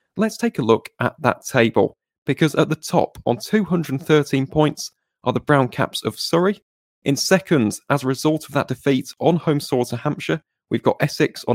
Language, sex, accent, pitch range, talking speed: English, male, British, 120-155 Hz, 190 wpm